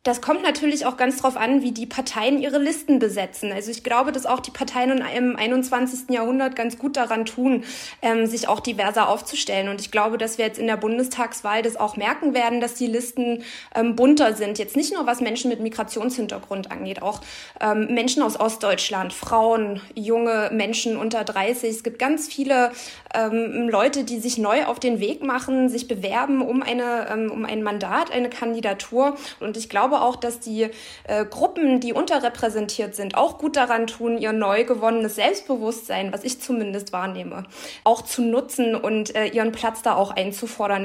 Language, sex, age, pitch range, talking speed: German, female, 20-39, 215-250 Hz, 175 wpm